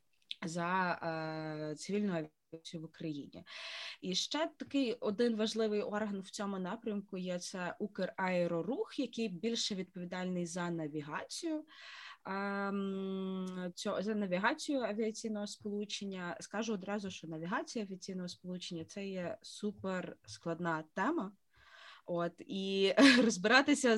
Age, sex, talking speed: 20-39, female, 110 wpm